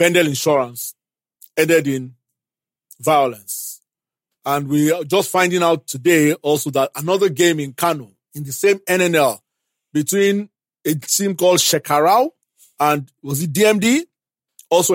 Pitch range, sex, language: 140-180 Hz, male, English